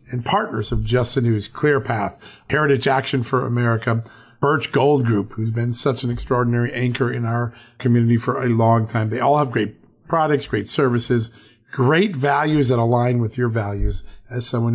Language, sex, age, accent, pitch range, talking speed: English, male, 40-59, American, 115-135 Hz, 175 wpm